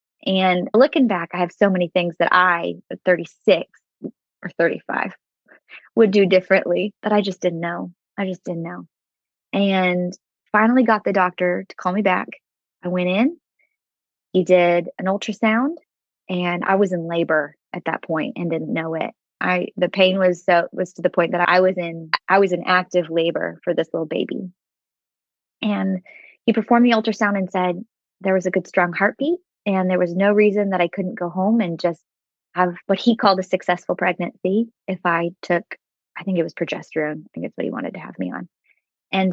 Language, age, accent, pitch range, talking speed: English, 20-39, American, 175-205 Hz, 195 wpm